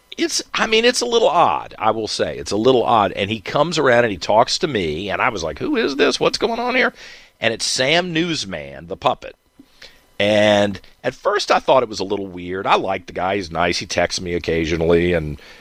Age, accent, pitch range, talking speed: 50-69, American, 90-135 Hz, 235 wpm